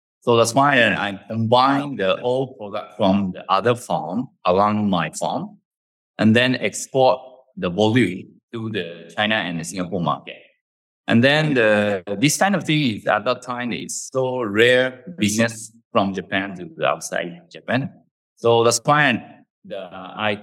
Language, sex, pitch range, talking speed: English, male, 100-125 Hz, 155 wpm